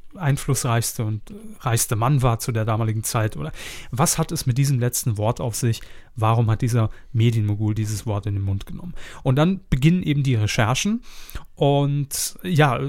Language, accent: German, German